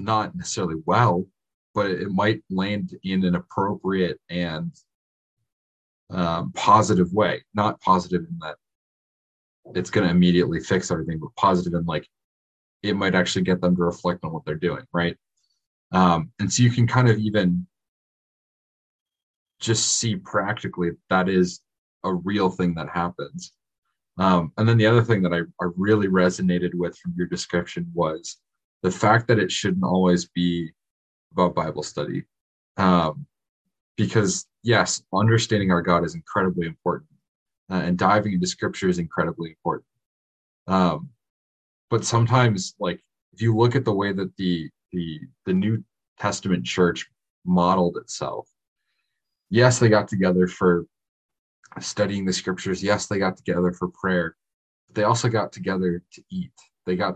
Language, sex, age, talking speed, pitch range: English, male, 30-49, 150 wpm, 85-105 Hz